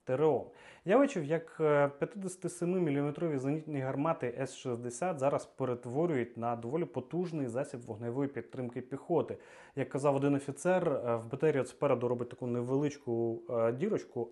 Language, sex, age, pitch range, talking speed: Ukrainian, male, 30-49, 120-160 Hz, 115 wpm